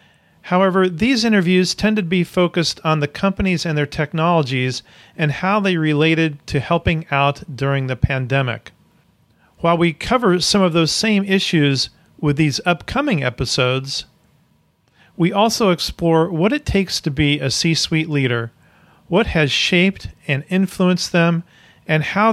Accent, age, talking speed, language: American, 40-59, 145 wpm, English